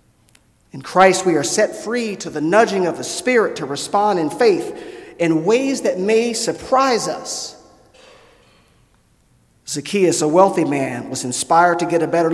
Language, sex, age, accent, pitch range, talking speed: English, male, 40-59, American, 145-185 Hz, 155 wpm